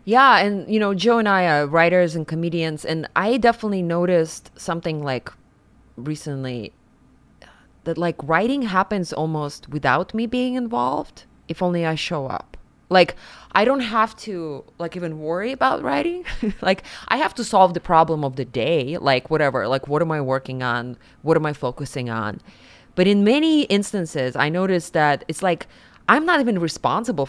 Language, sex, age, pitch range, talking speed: English, female, 20-39, 140-185 Hz, 170 wpm